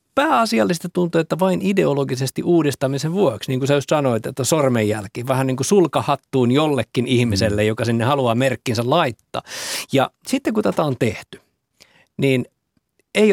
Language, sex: Finnish, male